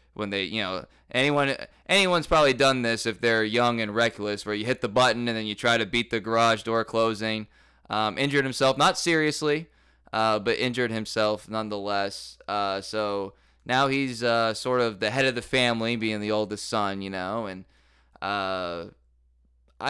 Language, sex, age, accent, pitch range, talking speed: English, male, 20-39, American, 100-125 Hz, 180 wpm